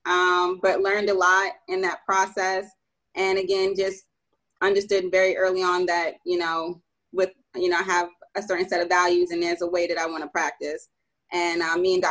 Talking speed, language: 205 wpm, English